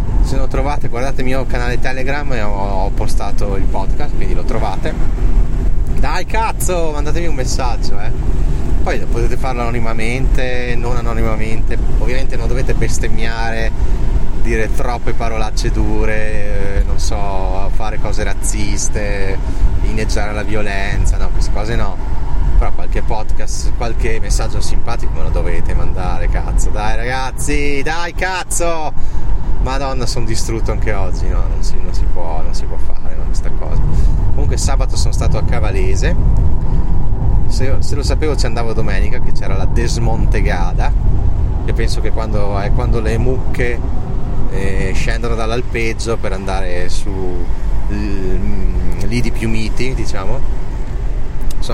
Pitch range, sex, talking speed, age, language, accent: 95-120 Hz, male, 135 wpm, 30-49, Italian, native